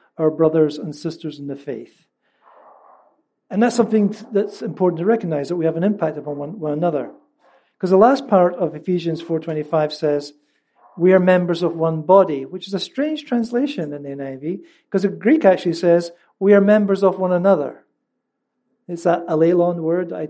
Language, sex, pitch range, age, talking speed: English, male, 165-225 Hz, 50-69, 175 wpm